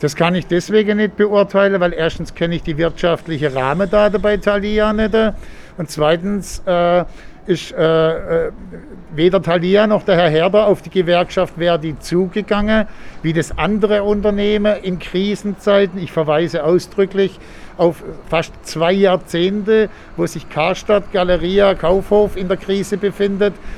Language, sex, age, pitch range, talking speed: German, male, 60-79, 170-200 Hz, 135 wpm